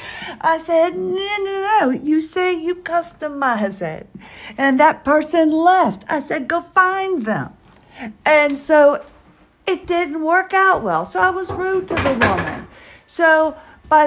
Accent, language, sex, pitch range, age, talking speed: American, English, female, 210-310 Hz, 50-69, 150 wpm